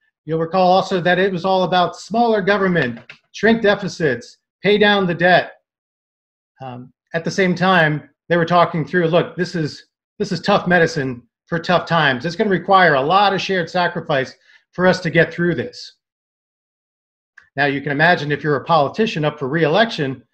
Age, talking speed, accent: 40-59, 175 wpm, American